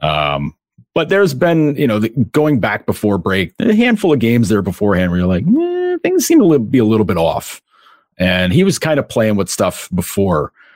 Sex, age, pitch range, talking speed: male, 40-59, 85-125 Hz, 205 wpm